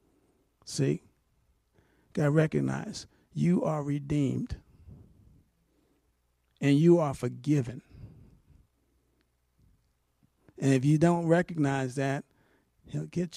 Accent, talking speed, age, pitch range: American, 80 wpm, 50-69, 130-200 Hz